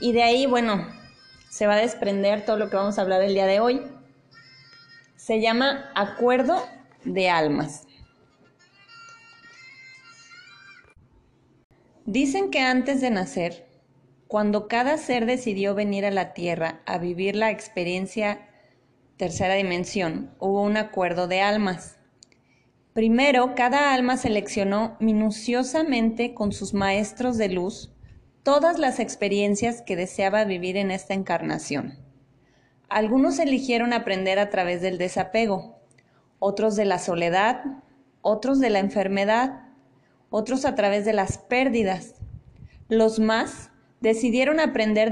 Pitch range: 185-240 Hz